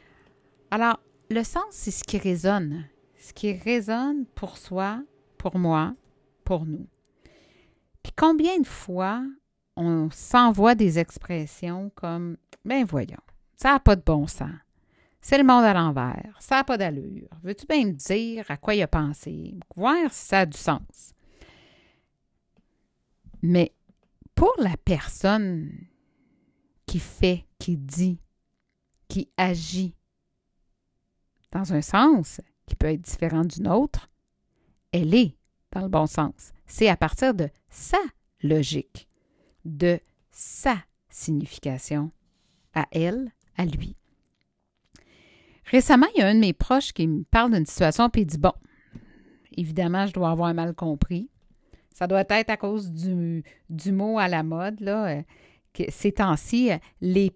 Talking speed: 140 wpm